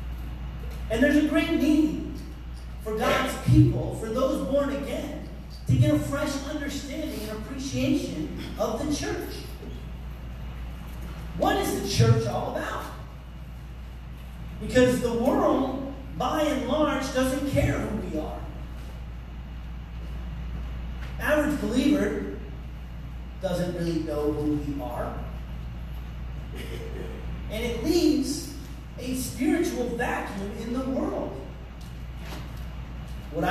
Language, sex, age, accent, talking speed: English, male, 40-59, American, 100 wpm